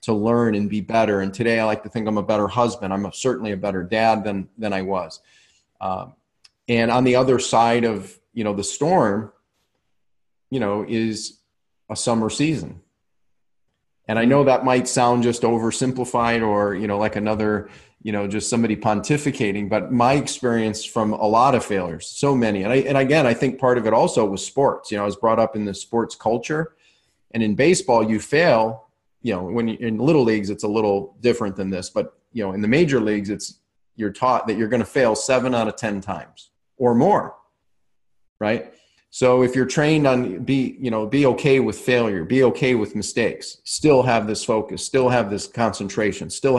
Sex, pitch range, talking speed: male, 105-125 Hz, 205 wpm